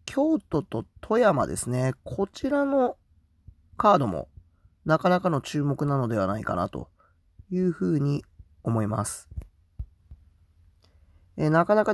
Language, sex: Japanese, male